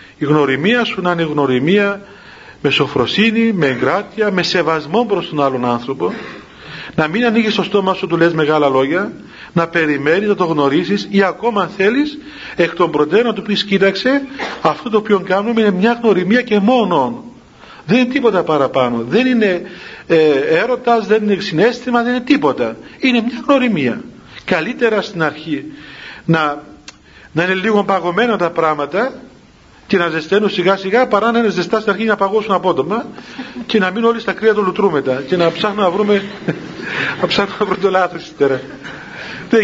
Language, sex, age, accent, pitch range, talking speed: Greek, male, 40-59, native, 165-225 Hz, 170 wpm